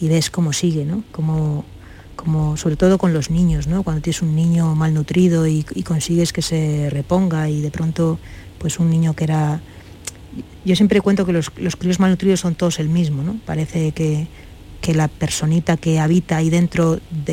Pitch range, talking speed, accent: 155-180 Hz, 190 wpm, Spanish